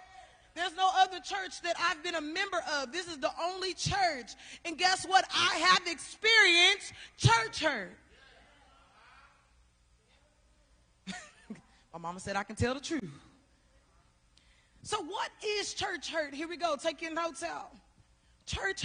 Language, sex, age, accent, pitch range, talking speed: English, female, 30-49, American, 205-330 Hz, 140 wpm